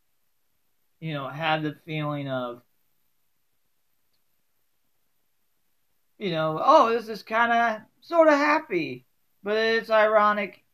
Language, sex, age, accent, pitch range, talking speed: English, male, 40-59, American, 145-195 Hz, 105 wpm